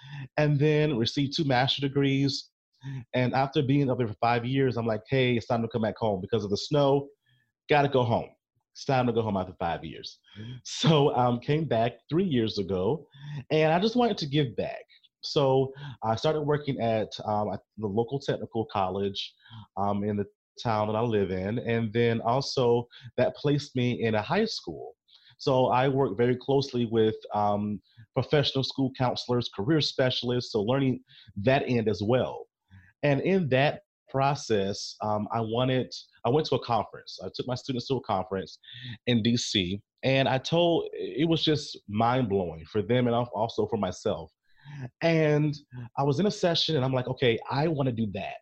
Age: 30-49